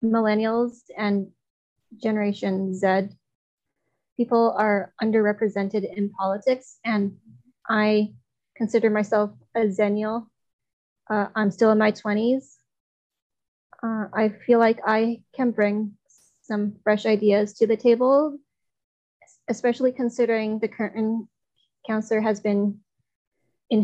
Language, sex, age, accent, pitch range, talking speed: English, female, 20-39, American, 205-240 Hz, 100 wpm